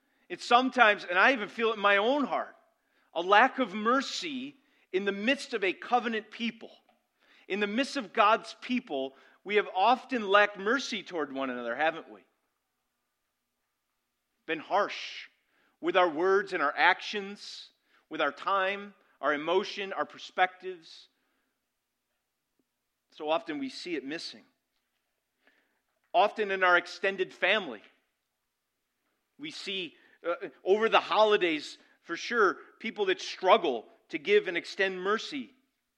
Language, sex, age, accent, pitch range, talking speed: English, male, 40-59, American, 185-275 Hz, 135 wpm